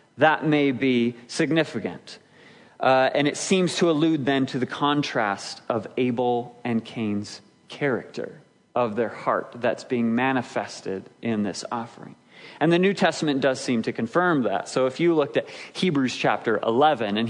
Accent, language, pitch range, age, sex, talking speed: American, English, 135-200 Hz, 30-49, male, 160 wpm